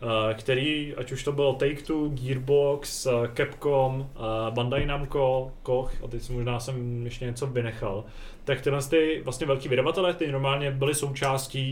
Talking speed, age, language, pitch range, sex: 145 wpm, 20-39, Czech, 120-135 Hz, male